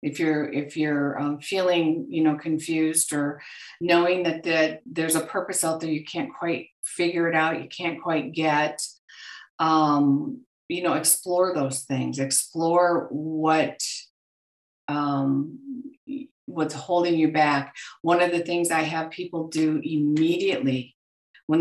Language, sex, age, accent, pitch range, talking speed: English, female, 50-69, American, 145-165 Hz, 135 wpm